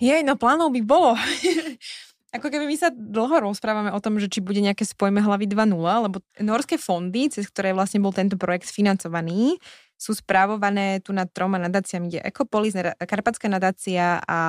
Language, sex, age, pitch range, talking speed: Slovak, female, 20-39, 180-215 Hz, 175 wpm